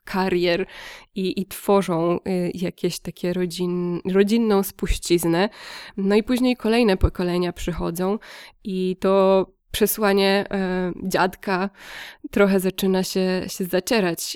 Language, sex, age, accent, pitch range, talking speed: Polish, female, 20-39, native, 180-200 Hz, 95 wpm